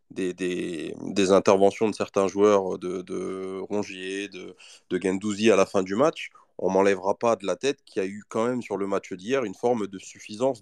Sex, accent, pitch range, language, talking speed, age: male, French, 95-120 Hz, French, 220 wpm, 20-39